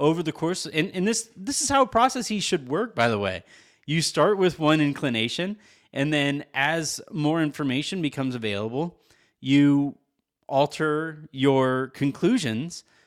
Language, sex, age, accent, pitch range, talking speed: English, male, 30-49, American, 130-155 Hz, 145 wpm